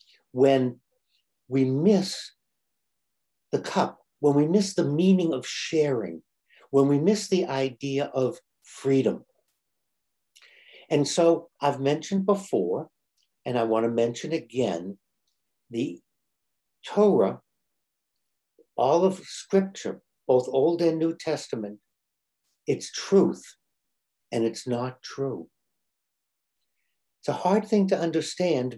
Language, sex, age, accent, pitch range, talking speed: English, male, 60-79, American, 130-185 Hz, 110 wpm